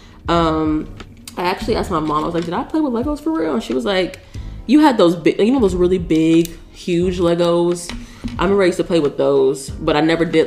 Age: 20-39